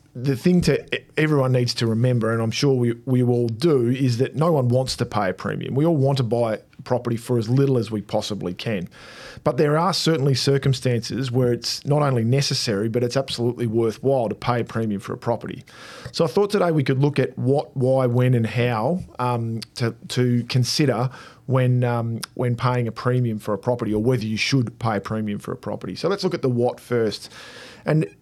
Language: English